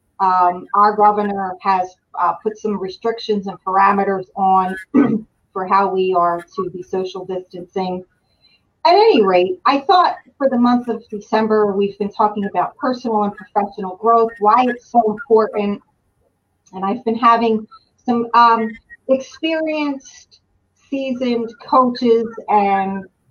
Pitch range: 205-275 Hz